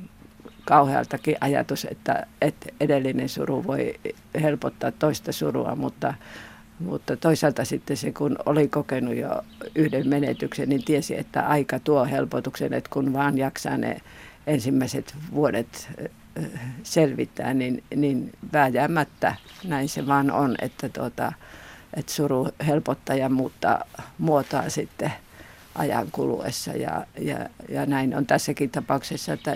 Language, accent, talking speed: Finnish, native, 120 wpm